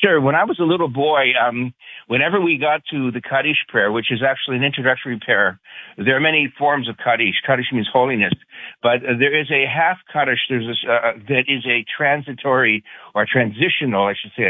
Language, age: English, 60-79